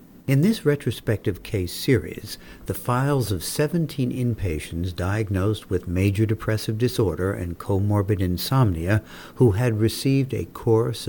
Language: English